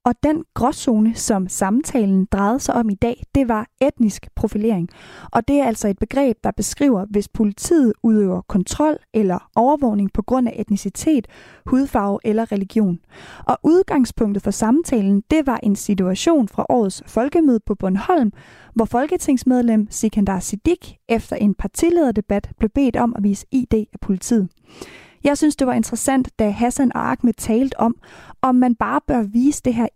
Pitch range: 210-260 Hz